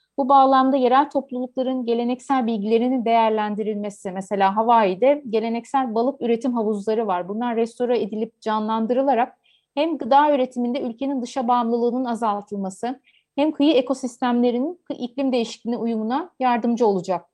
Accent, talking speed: native, 115 wpm